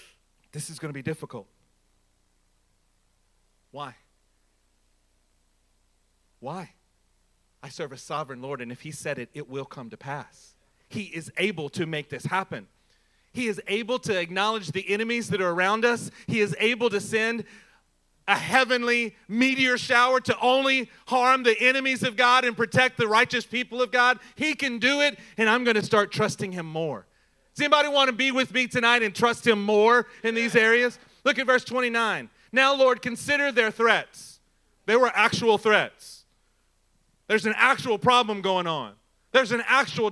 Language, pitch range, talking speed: English, 165-245 Hz, 170 wpm